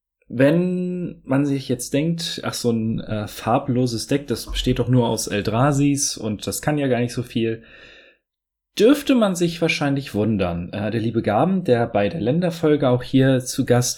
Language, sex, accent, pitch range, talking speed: German, male, German, 110-140 Hz, 180 wpm